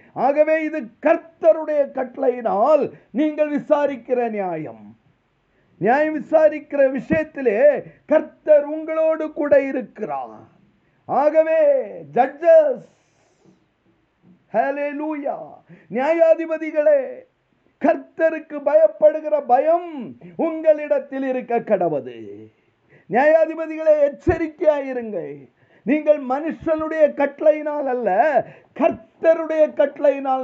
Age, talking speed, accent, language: 50-69, 40 wpm, native, Tamil